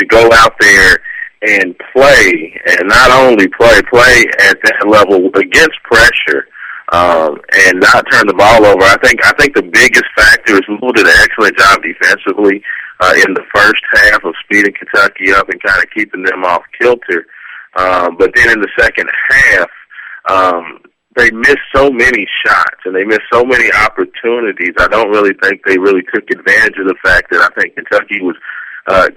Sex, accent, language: male, American, English